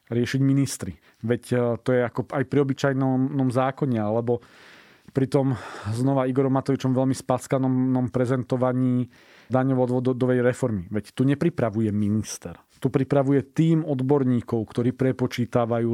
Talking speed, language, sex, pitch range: 125 wpm, Slovak, male, 120-135 Hz